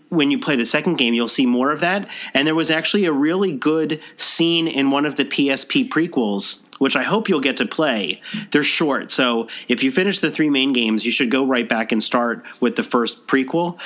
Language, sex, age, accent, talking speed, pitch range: English, male, 30-49, American, 230 wpm, 130-175 Hz